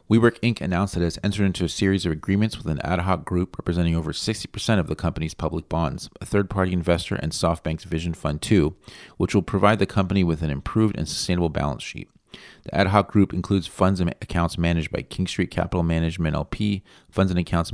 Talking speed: 215 wpm